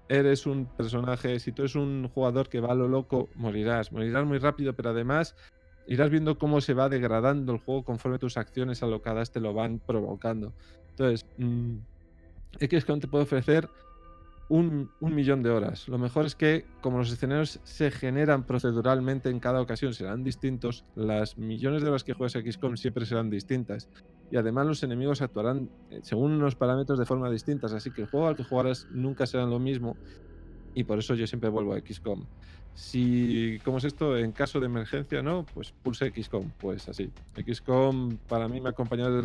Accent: Spanish